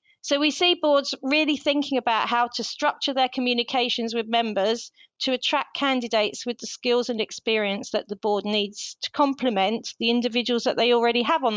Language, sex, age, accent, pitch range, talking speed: English, female, 40-59, British, 220-270 Hz, 180 wpm